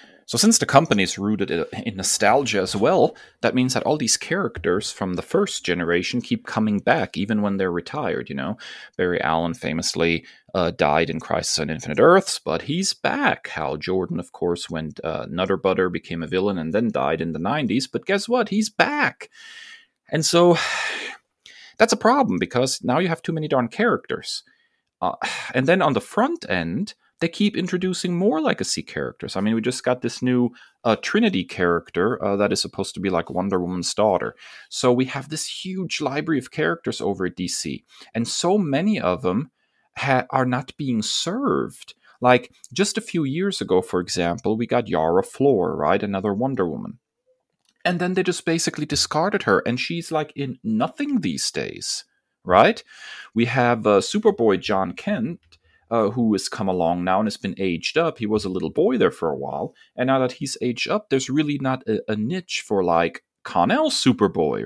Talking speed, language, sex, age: 185 wpm, English, male, 30-49